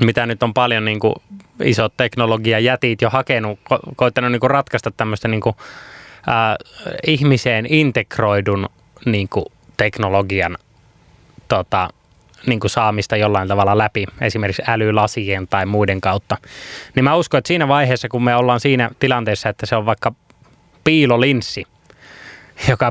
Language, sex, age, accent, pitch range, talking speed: Finnish, male, 20-39, native, 110-135 Hz, 140 wpm